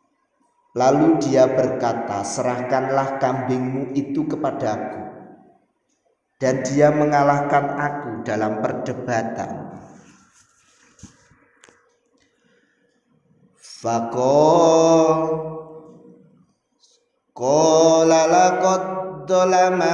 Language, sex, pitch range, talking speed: Indonesian, male, 135-180 Hz, 55 wpm